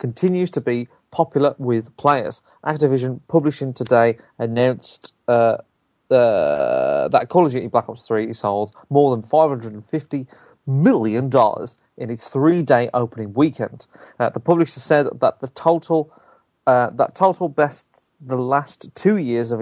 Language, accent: English, British